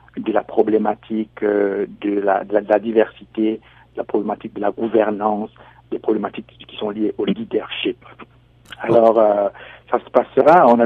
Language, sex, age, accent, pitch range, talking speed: French, male, 60-79, French, 110-130 Hz, 165 wpm